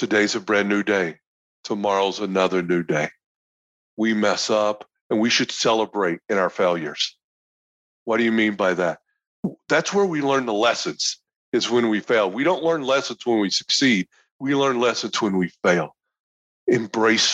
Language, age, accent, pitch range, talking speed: English, 50-69, American, 100-120 Hz, 170 wpm